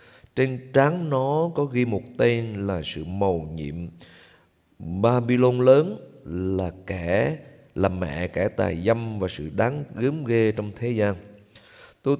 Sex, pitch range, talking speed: male, 100-135 Hz, 145 wpm